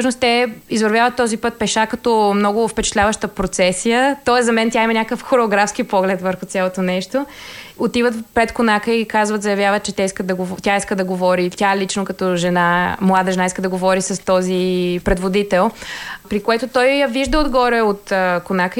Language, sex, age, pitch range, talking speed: Bulgarian, female, 20-39, 195-240 Hz, 165 wpm